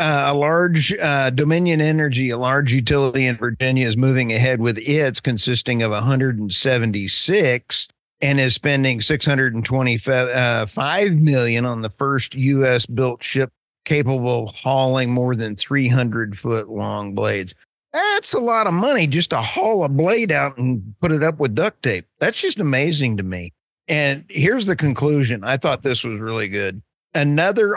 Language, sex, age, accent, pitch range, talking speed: English, male, 40-59, American, 120-150 Hz, 155 wpm